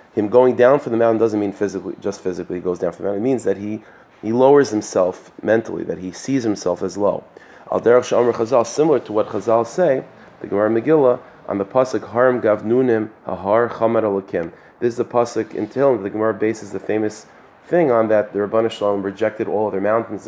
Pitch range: 105-125 Hz